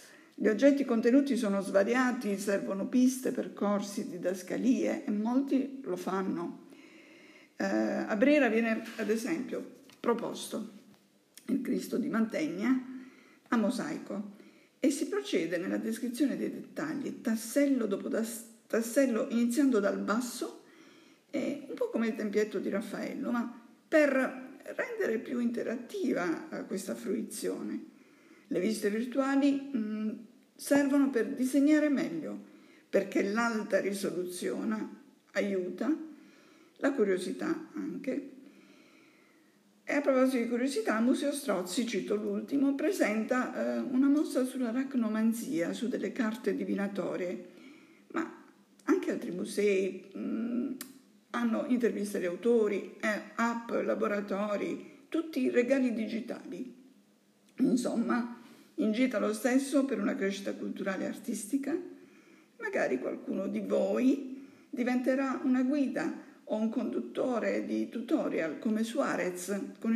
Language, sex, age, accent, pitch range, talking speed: French, female, 50-69, Italian, 225-285 Hz, 110 wpm